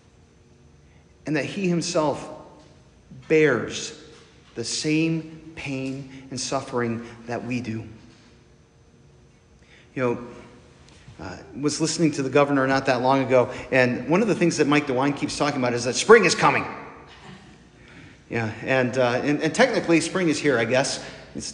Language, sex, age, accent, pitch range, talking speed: English, male, 40-59, American, 120-145 Hz, 150 wpm